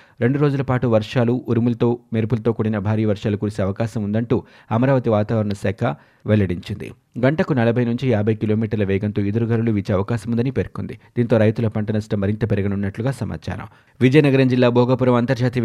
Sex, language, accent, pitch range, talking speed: male, Telugu, native, 110-130 Hz, 140 wpm